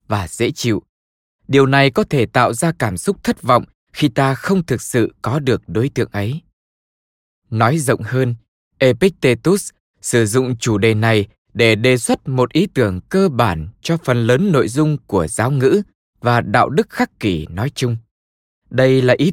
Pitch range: 115-150 Hz